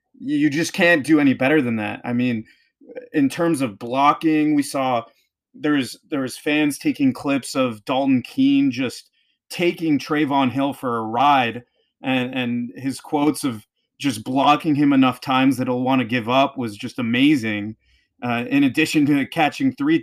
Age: 30-49